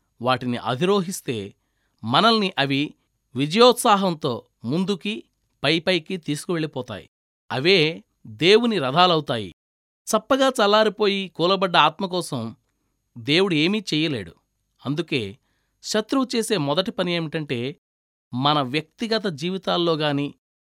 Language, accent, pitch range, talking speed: Telugu, native, 140-210 Hz, 75 wpm